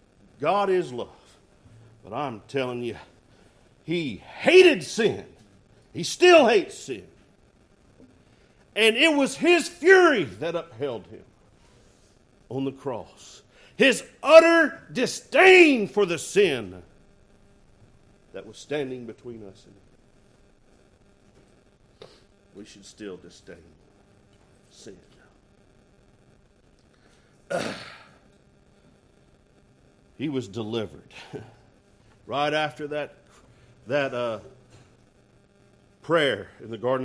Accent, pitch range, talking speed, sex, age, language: American, 100-150 Hz, 90 wpm, male, 50-69, English